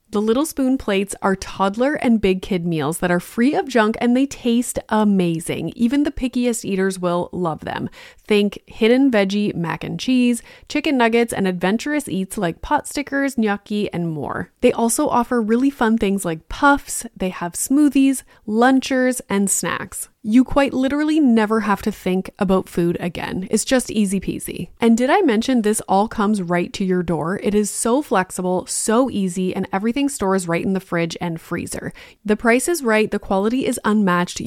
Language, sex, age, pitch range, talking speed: English, female, 20-39, 185-245 Hz, 180 wpm